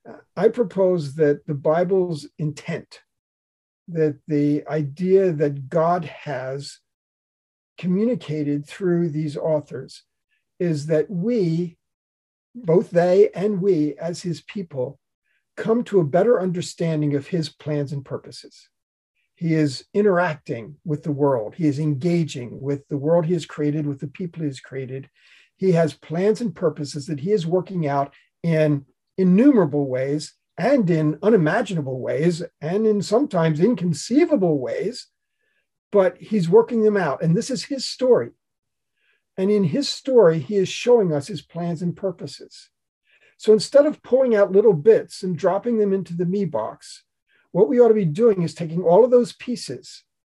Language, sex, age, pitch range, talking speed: English, male, 50-69, 150-205 Hz, 150 wpm